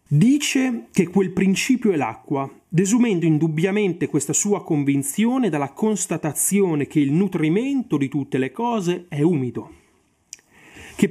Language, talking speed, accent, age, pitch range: Italian, 125 wpm, native, 30-49, 145-220 Hz